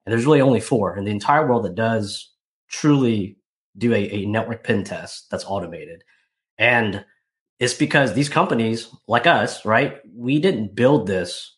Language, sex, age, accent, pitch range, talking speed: English, male, 30-49, American, 105-135 Hz, 165 wpm